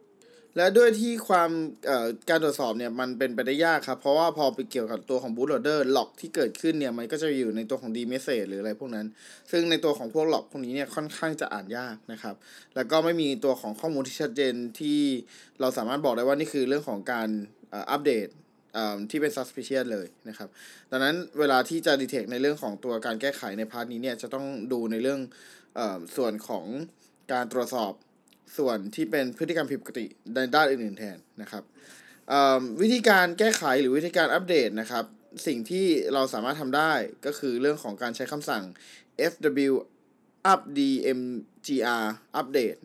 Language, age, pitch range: Thai, 20-39, 120-155 Hz